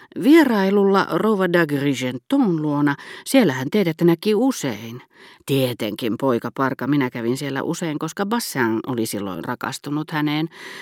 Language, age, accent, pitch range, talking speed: Finnish, 40-59, native, 125-175 Hz, 120 wpm